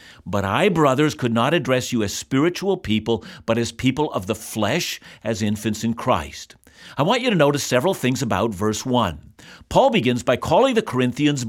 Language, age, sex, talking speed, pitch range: English, 50-69, male, 190 wpm, 120-185 Hz